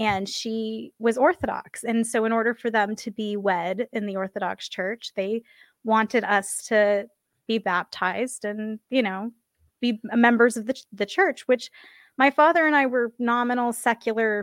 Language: English